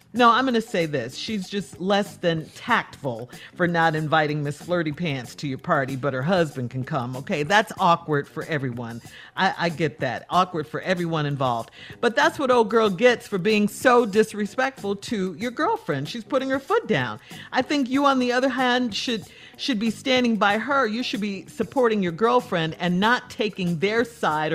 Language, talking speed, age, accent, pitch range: English, 195 wpm, 50-69, American, 170-250 Hz